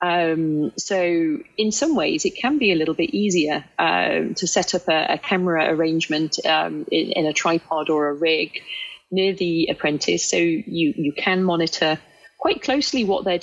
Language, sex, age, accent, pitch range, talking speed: English, female, 30-49, British, 160-200 Hz, 185 wpm